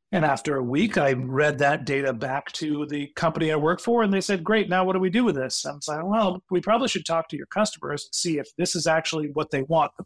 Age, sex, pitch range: 40-59, male, 160-205 Hz